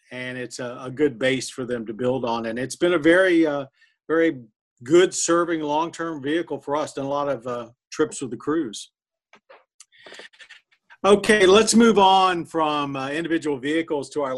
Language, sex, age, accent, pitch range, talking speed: English, male, 50-69, American, 135-180 Hz, 175 wpm